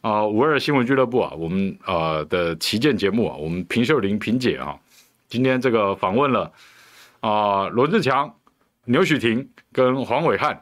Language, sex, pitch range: Chinese, male, 95-130 Hz